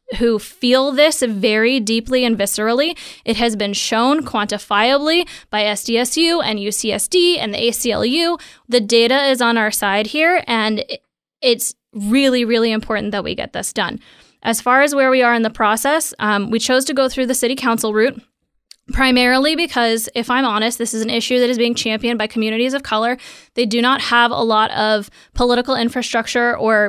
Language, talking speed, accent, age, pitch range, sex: English, 185 wpm, American, 20-39, 215-250 Hz, female